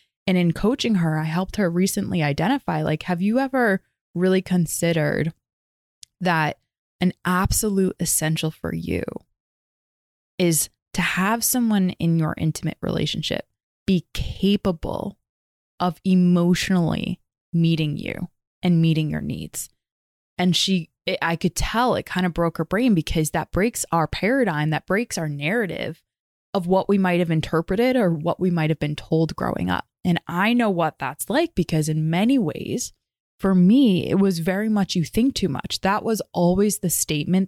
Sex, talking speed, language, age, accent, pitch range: female, 160 wpm, English, 20-39, American, 155-195 Hz